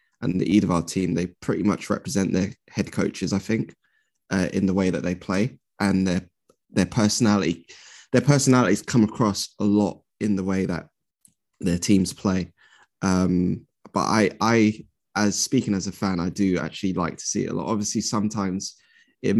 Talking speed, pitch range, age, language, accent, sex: 180 wpm, 90-105 Hz, 10-29, English, British, male